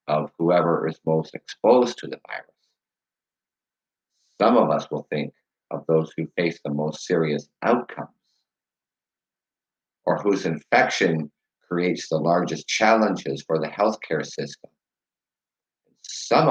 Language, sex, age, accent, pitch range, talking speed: English, male, 50-69, American, 80-105 Hz, 120 wpm